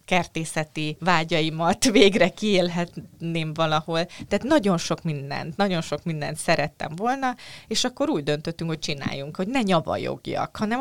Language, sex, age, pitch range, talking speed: Hungarian, female, 20-39, 145-190 Hz, 135 wpm